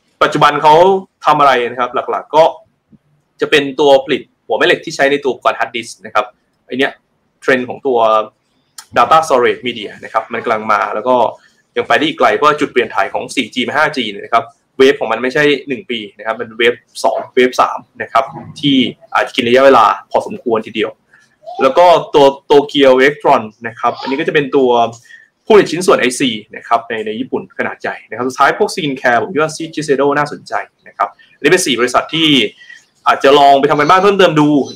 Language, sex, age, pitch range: Thai, male, 20-39, 130-175 Hz